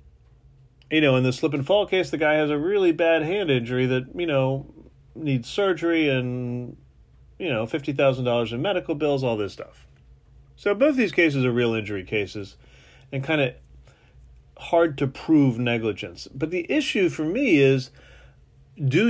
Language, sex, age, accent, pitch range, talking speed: English, male, 30-49, American, 115-160 Hz, 165 wpm